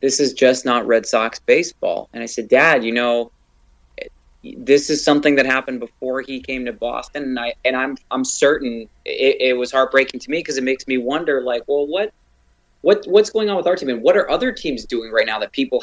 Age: 20-39